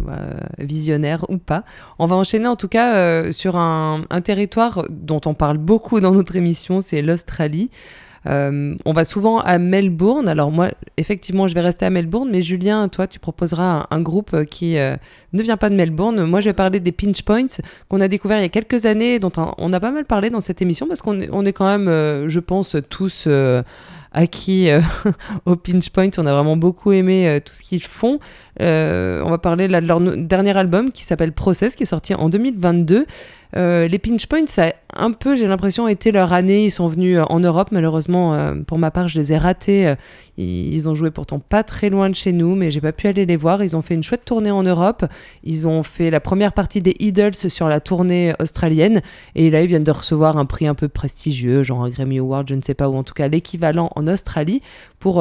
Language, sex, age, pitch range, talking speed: French, female, 20-39, 160-195 Hz, 230 wpm